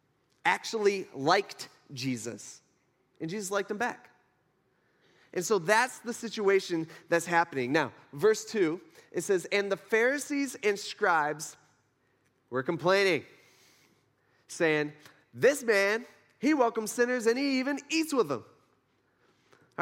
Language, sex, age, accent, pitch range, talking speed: English, male, 30-49, American, 145-185 Hz, 120 wpm